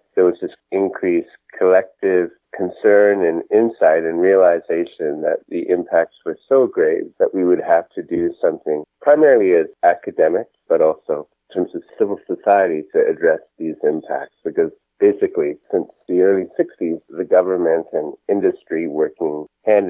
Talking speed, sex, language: 150 wpm, male, English